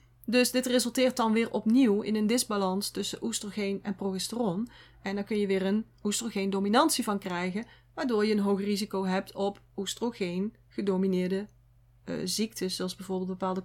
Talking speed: 160 wpm